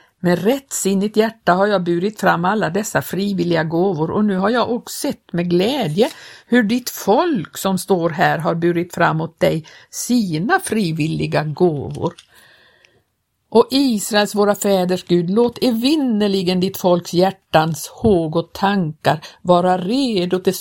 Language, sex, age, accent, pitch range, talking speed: Swedish, female, 60-79, native, 170-210 Hz, 145 wpm